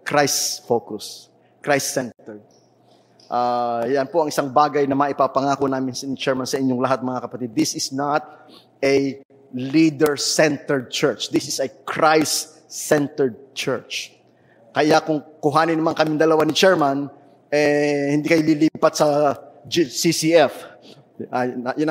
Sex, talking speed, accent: male, 125 wpm, Filipino